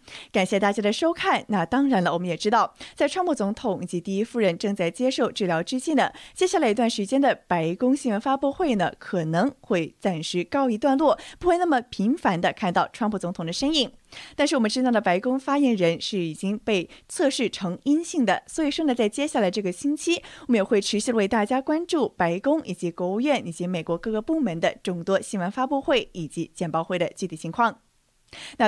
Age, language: 20-39, Chinese